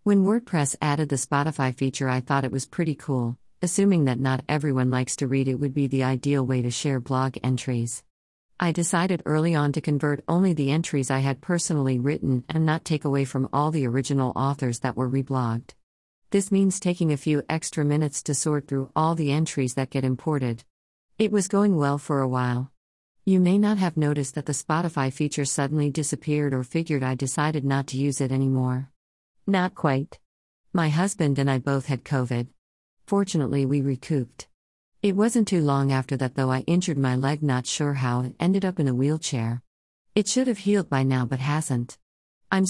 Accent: American